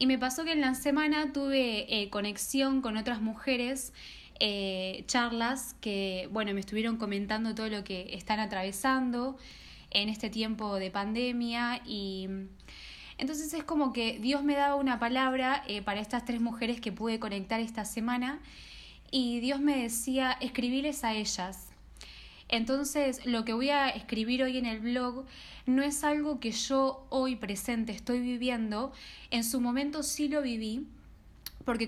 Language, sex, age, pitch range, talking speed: Spanish, female, 10-29, 215-260 Hz, 155 wpm